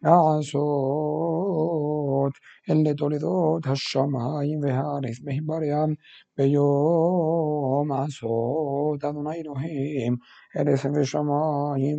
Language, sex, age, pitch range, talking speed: Hebrew, male, 60-79, 140-160 Hz, 60 wpm